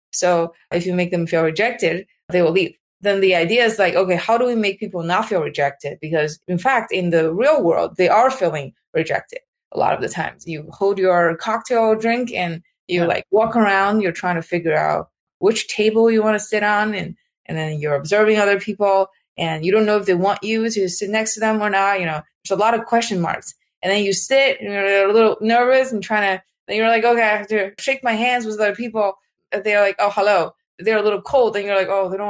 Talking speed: 245 wpm